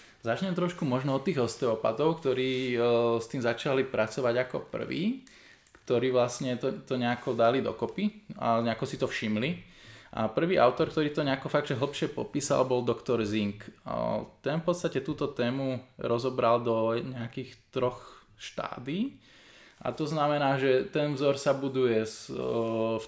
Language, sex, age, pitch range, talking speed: Slovak, male, 20-39, 115-140 Hz, 145 wpm